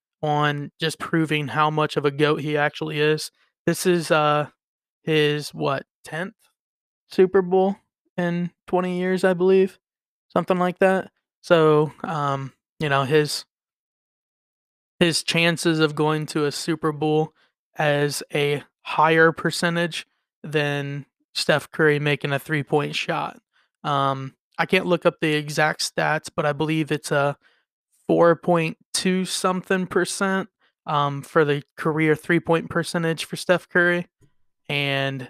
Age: 20-39